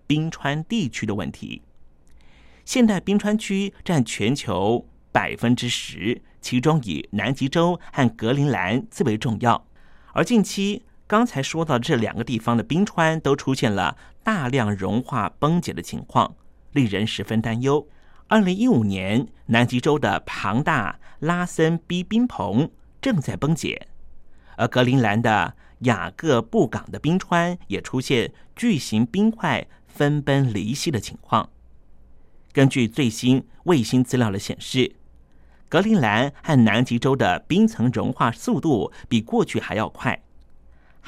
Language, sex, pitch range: Chinese, male, 110-160 Hz